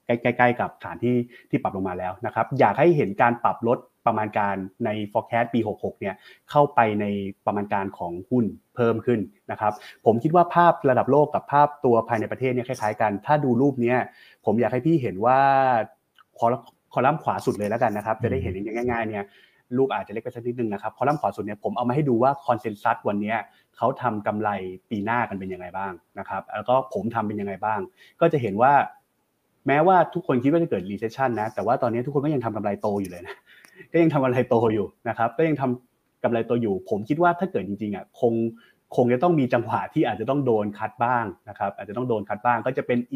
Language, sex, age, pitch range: Thai, male, 30-49, 110-135 Hz